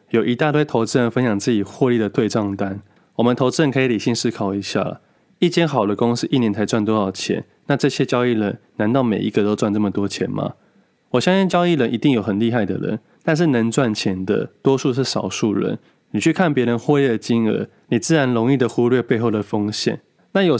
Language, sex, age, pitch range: Chinese, male, 20-39, 105-140 Hz